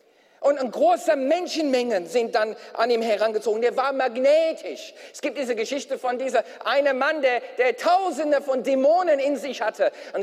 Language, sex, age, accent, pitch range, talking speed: German, male, 40-59, German, 265-340 Hz, 165 wpm